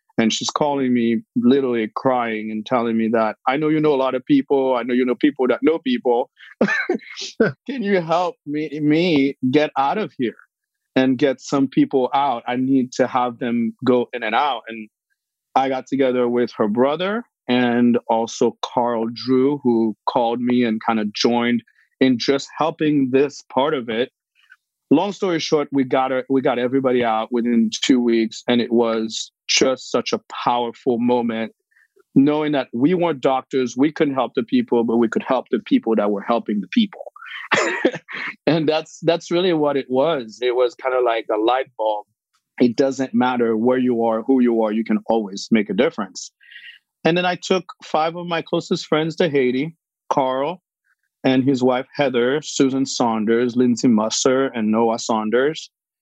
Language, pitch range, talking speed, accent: English, 120-150 Hz, 180 wpm, American